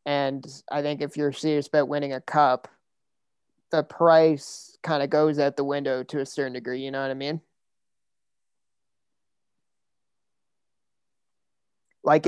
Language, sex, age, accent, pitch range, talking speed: English, male, 30-49, American, 145-165 Hz, 135 wpm